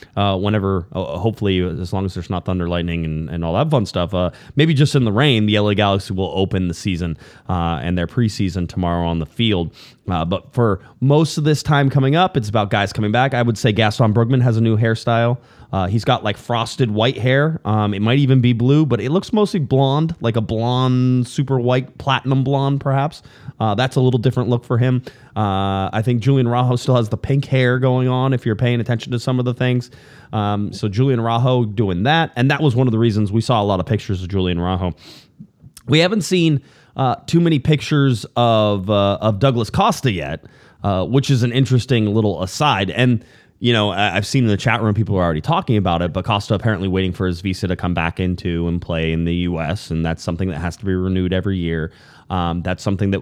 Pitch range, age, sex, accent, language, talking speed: 95-130 Hz, 20-39, male, American, English, 230 wpm